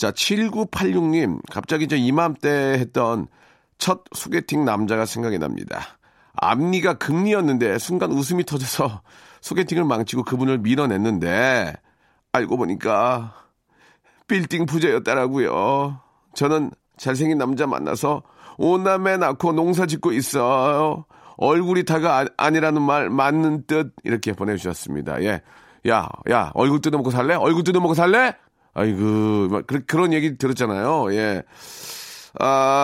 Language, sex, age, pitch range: Korean, male, 40-59, 120-160 Hz